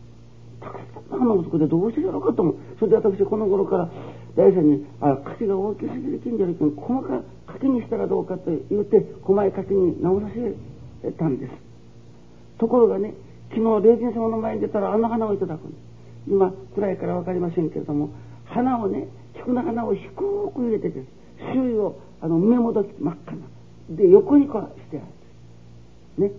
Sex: male